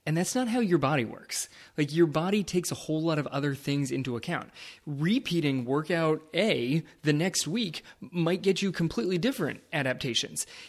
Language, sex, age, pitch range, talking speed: English, male, 20-39, 130-165 Hz, 175 wpm